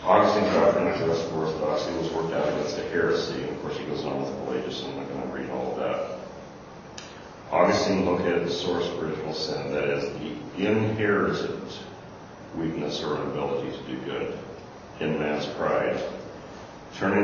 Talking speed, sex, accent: 185 wpm, male, American